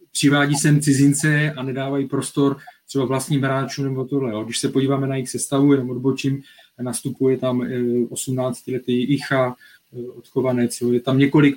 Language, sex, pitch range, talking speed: Czech, male, 120-140 Hz, 145 wpm